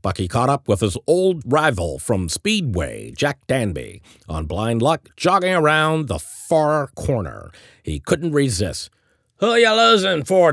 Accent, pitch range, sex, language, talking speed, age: American, 100-155 Hz, male, English, 155 wpm, 50-69